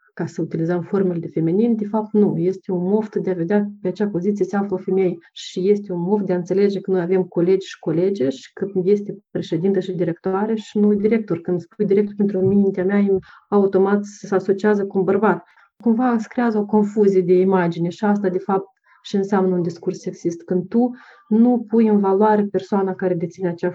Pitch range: 180-210 Hz